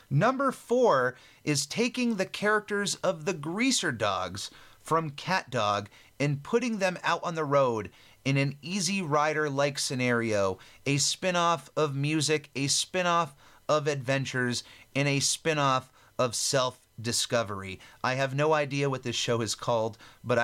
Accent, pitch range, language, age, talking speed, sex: American, 125-165 Hz, English, 30-49, 155 wpm, male